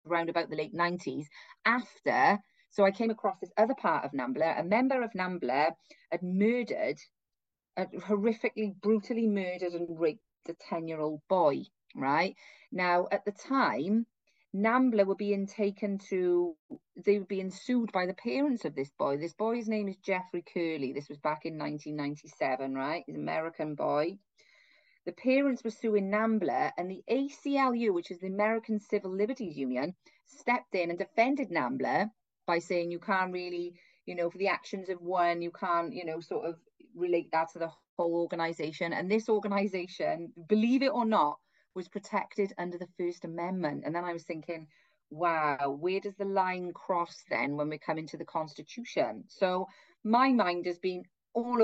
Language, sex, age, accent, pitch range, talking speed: English, female, 30-49, British, 170-220 Hz, 175 wpm